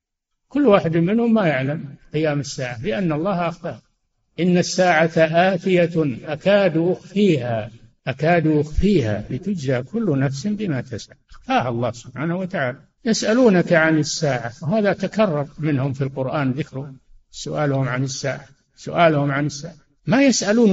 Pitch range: 135-180 Hz